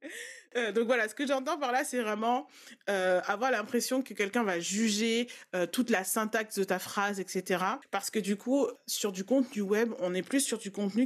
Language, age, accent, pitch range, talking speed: French, 30-49, French, 185-240 Hz, 210 wpm